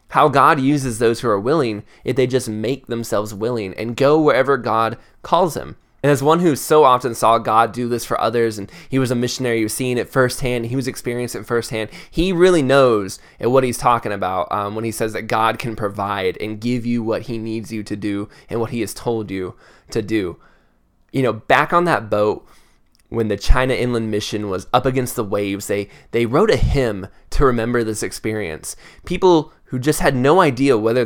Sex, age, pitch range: male, 20-39, 110-135 Hz